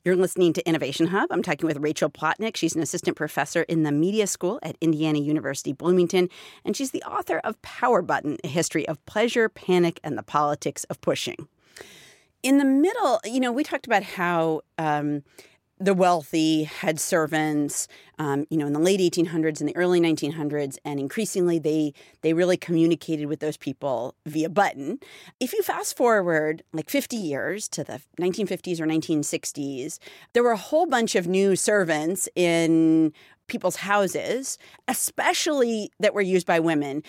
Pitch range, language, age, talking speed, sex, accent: 155-230 Hz, English, 40-59, 175 wpm, female, American